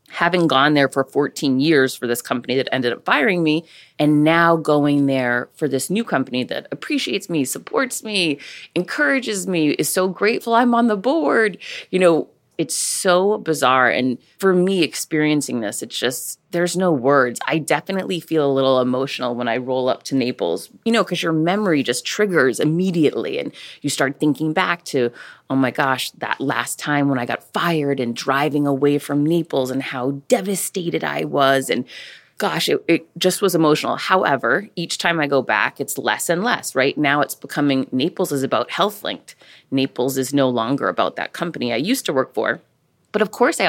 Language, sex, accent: English, female, American